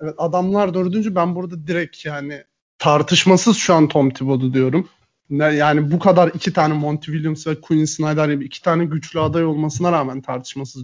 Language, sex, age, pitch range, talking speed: Turkish, male, 30-49, 155-205 Hz, 170 wpm